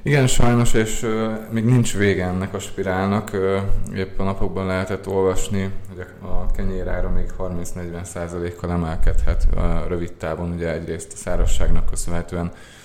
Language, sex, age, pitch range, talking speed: Hungarian, male, 20-39, 85-95 Hz, 145 wpm